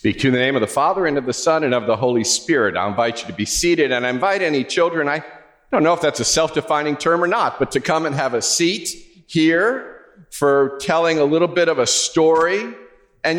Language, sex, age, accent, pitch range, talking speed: English, male, 50-69, American, 120-170 Hz, 245 wpm